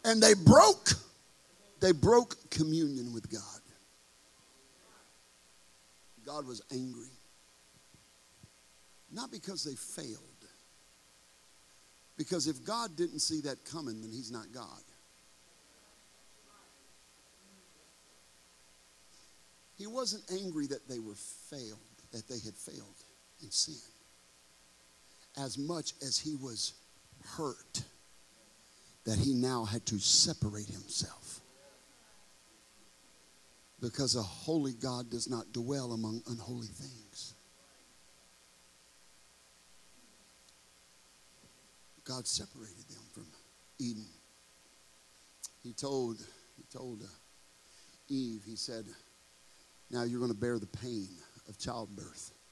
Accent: American